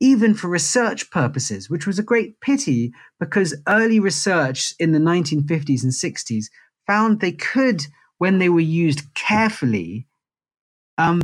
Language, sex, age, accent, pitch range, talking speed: English, male, 40-59, British, 130-170 Hz, 140 wpm